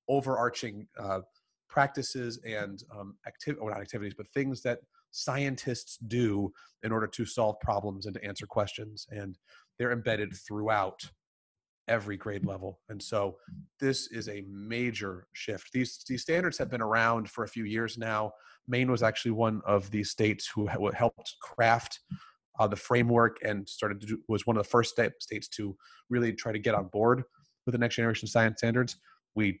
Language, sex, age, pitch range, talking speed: English, male, 30-49, 100-120 Hz, 170 wpm